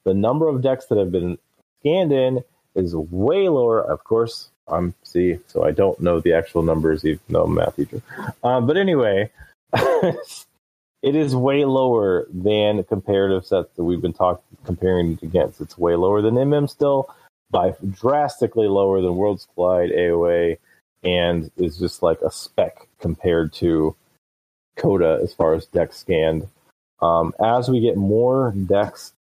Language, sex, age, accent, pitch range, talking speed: English, male, 30-49, American, 90-110 Hz, 160 wpm